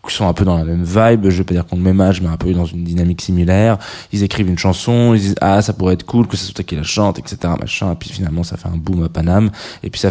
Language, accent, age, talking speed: French, French, 20-39, 325 wpm